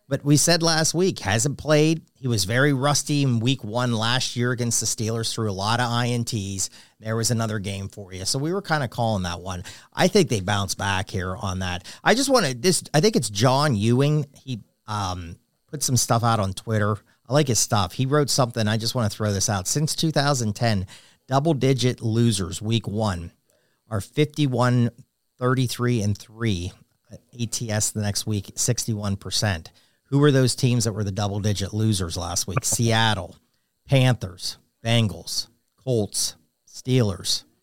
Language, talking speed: English, 170 wpm